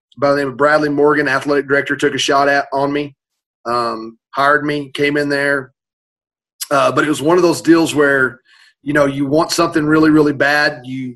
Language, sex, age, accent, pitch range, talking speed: English, male, 30-49, American, 135-155 Hz, 205 wpm